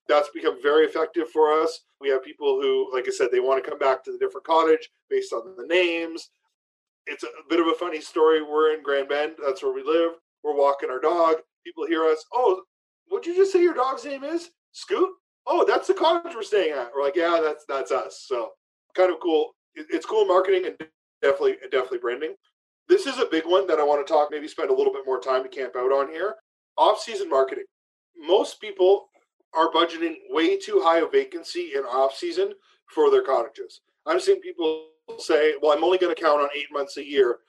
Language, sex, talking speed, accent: English, male, 215 wpm, American